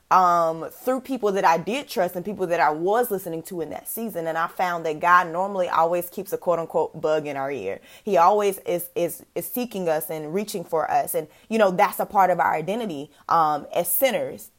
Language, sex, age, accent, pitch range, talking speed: English, female, 20-39, American, 170-230 Hz, 225 wpm